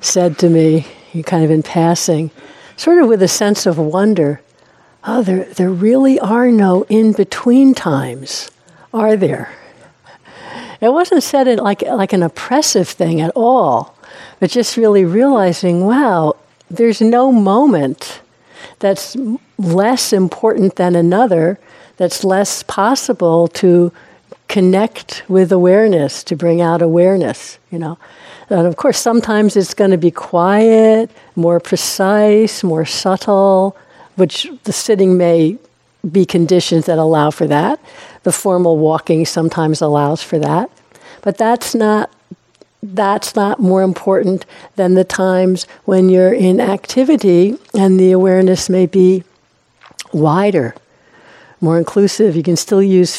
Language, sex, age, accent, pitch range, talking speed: English, female, 60-79, American, 170-215 Hz, 130 wpm